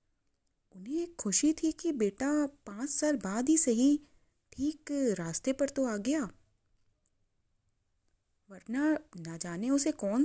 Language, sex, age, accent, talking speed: Hindi, female, 30-49, native, 125 wpm